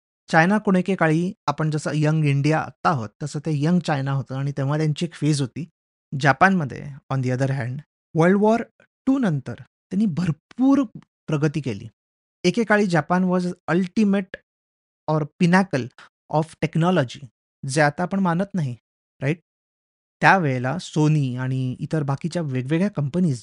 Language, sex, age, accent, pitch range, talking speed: Marathi, male, 30-49, native, 135-175 Hz, 140 wpm